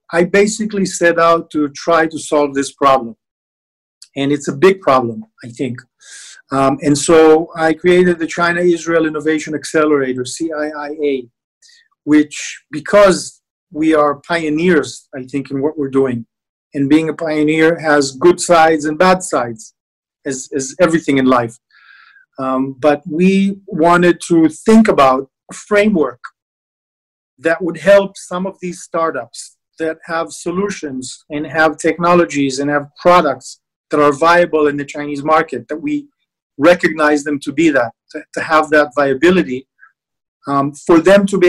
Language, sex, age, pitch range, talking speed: English, male, 40-59, 145-175 Hz, 145 wpm